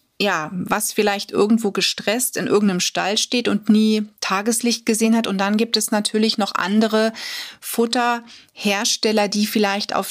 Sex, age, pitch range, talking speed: female, 30-49, 190-230 Hz, 150 wpm